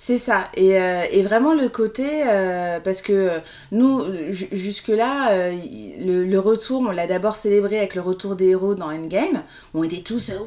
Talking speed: 185 wpm